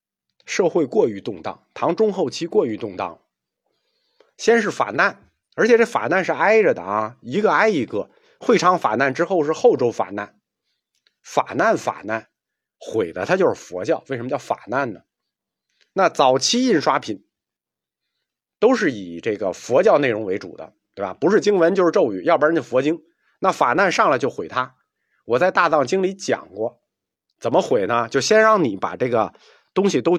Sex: male